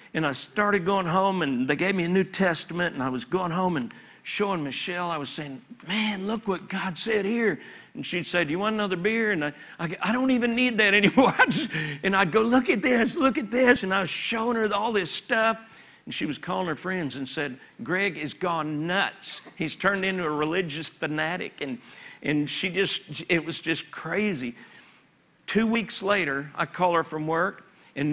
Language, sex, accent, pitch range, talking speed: English, male, American, 155-215 Hz, 205 wpm